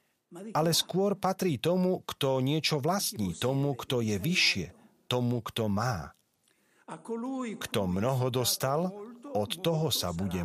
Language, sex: Slovak, male